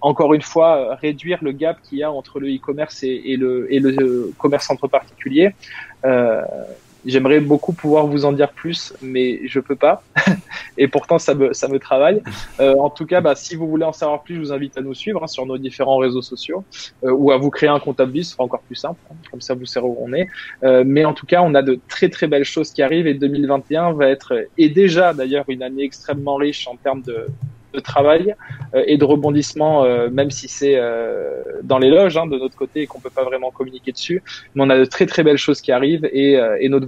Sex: male